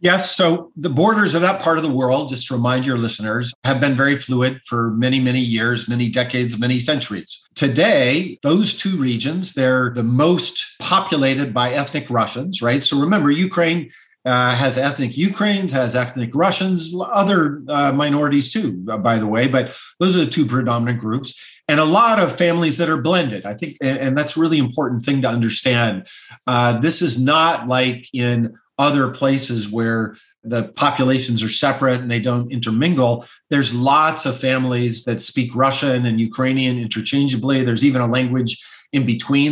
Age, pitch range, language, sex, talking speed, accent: 50-69, 120-150 Hz, English, male, 170 wpm, American